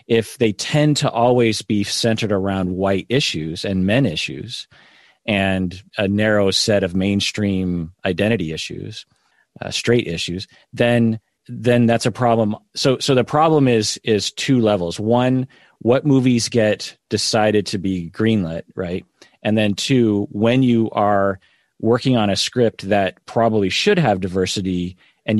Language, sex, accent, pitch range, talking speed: English, male, American, 95-125 Hz, 145 wpm